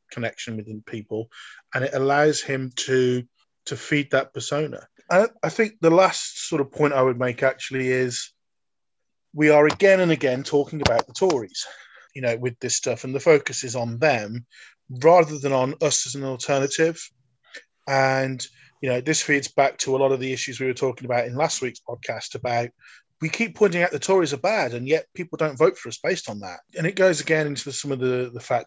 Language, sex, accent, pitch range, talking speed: English, male, British, 125-150 Hz, 210 wpm